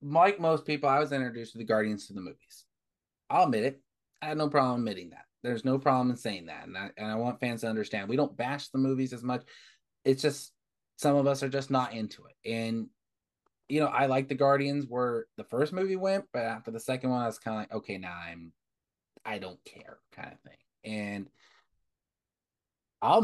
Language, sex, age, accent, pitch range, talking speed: English, male, 20-39, American, 115-140 Hz, 220 wpm